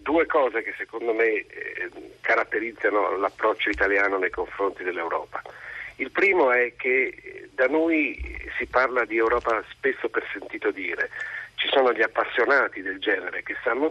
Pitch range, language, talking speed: 285-445 Hz, Italian, 140 wpm